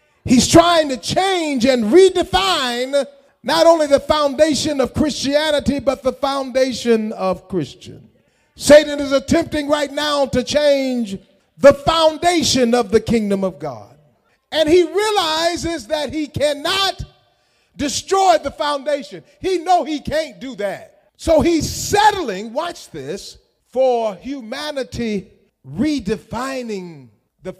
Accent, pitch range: American, 240-310 Hz